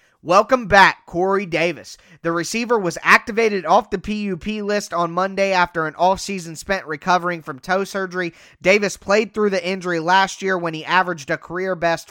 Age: 20-39